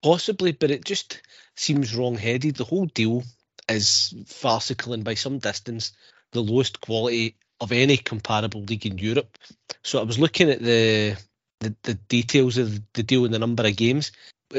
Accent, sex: British, male